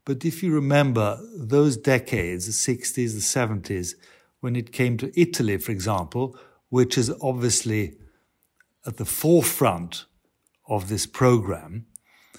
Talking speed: 125 wpm